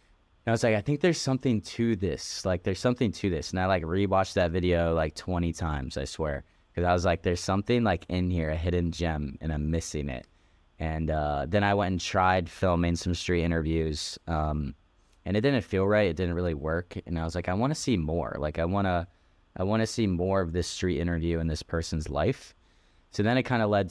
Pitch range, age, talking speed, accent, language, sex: 80-95 Hz, 10-29, 235 wpm, American, English, male